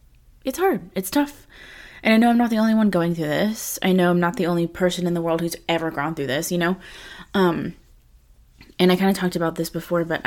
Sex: female